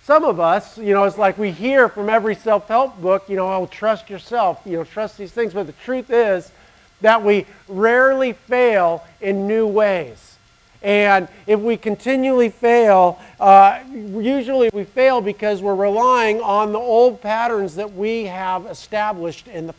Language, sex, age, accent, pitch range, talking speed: English, male, 50-69, American, 185-225 Hz, 165 wpm